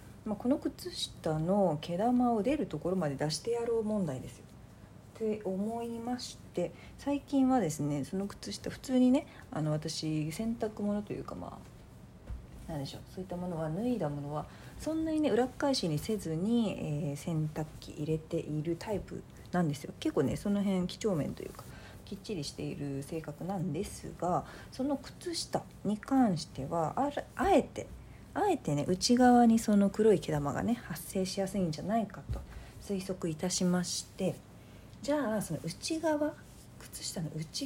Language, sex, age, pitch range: Japanese, female, 40-59, 160-235 Hz